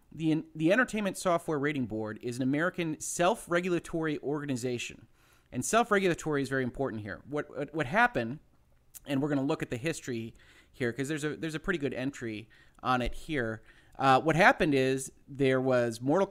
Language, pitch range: English, 120-150 Hz